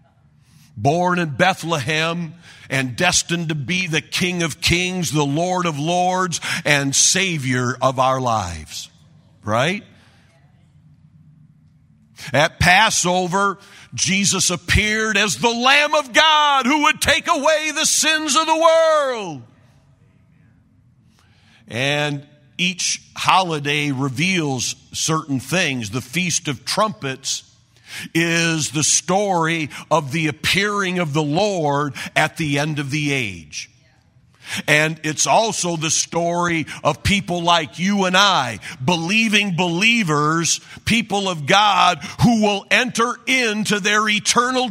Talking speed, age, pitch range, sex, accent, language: 115 wpm, 50-69, 140-200 Hz, male, American, English